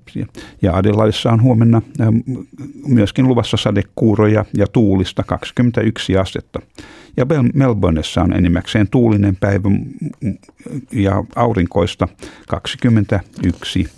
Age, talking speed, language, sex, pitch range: 60-79, 90 wpm, Finnish, male, 95-115 Hz